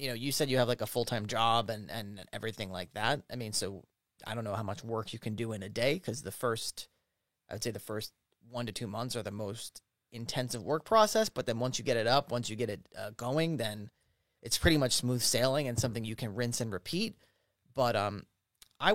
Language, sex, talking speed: English, male, 240 wpm